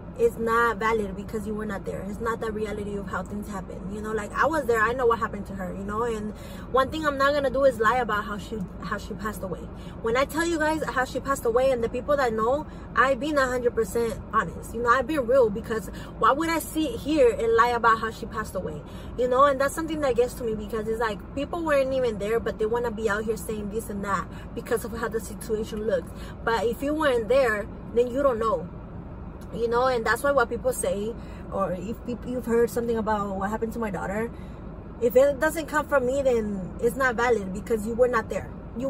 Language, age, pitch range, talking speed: English, 20-39, 215-260 Hz, 250 wpm